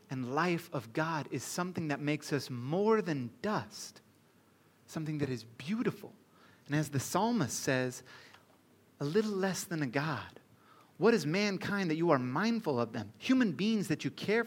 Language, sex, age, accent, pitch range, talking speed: English, male, 30-49, American, 130-185 Hz, 170 wpm